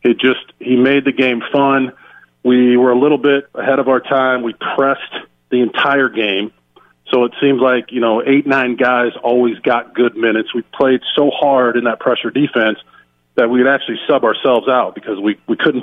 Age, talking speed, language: 40-59, 195 wpm, English